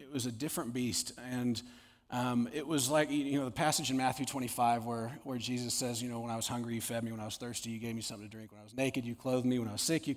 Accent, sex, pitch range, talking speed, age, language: American, male, 120-145 Hz, 305 wpm, 30-49, English